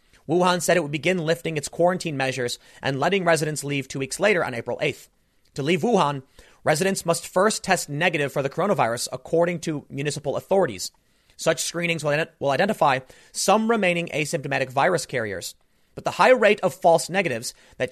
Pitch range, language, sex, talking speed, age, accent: 140-185 Hz, English, male, 175 wpm, 30-49, American